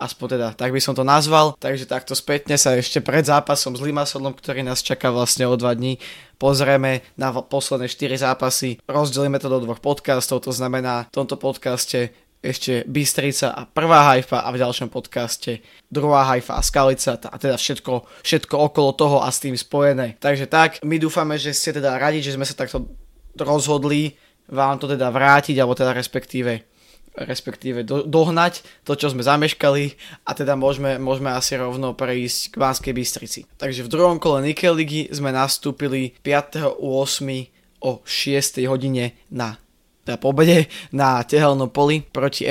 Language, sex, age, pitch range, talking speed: Slovak, male, 20-39, 130-145 Hz, 170 wpm